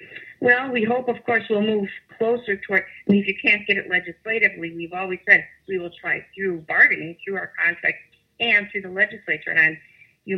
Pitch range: 170-220 Hz